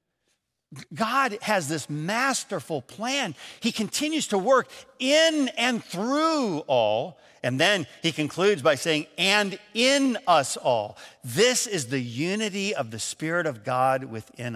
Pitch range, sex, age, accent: 135-195 Hz, male, 50-69, American